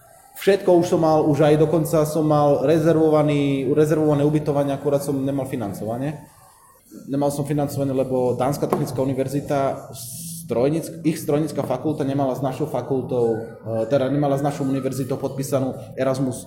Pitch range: 120-145 Hz